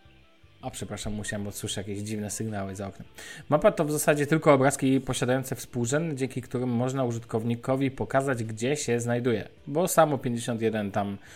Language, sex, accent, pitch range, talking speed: Polish, male, native, 115-145 Hz, 155 wpm